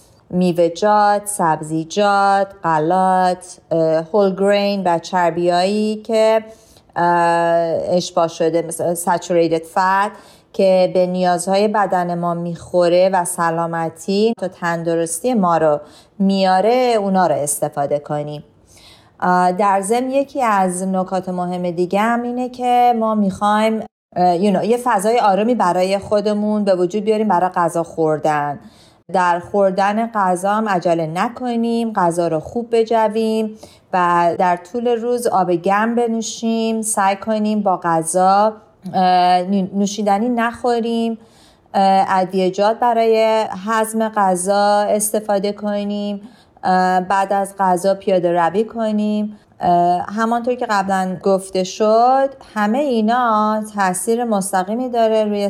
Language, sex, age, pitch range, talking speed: Persian, female, 30-49, 175-220 Hz, 110 wpm